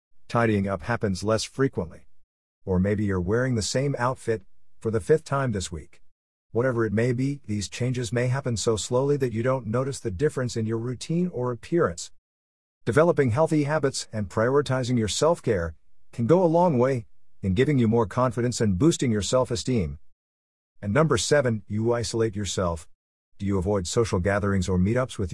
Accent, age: American, 50-69